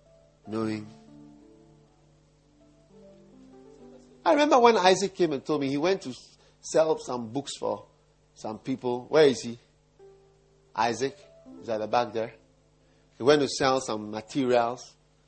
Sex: male